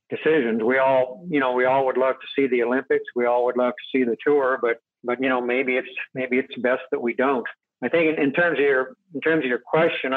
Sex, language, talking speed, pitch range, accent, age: male, English, 265 wpm, 125-140 Hz, American, 60-79